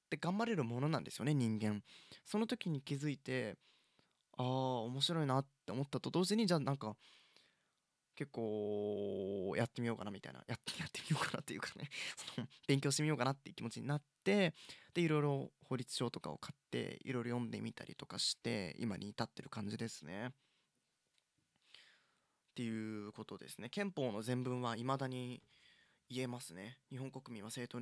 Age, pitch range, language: 20-39, 115-150 Hz, Japanese